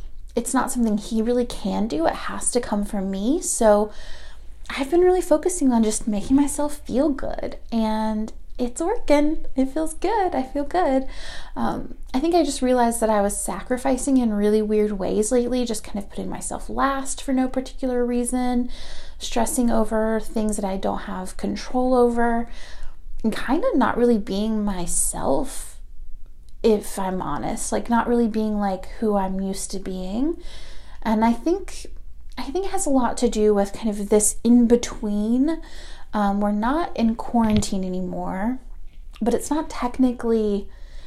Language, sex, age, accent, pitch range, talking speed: English, female, 30-49, American, 210-270 Hz, 165 wpm